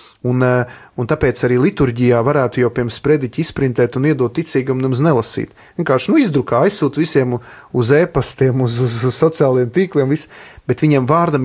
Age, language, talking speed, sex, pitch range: 30-49, English, 160 wpm, male, 125-155 Hz